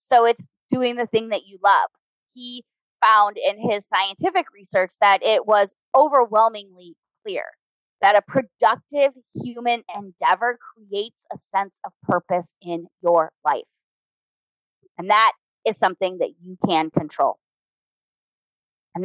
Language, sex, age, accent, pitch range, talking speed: English, female, 20-39, American, 195-280 Hz, 130 wpm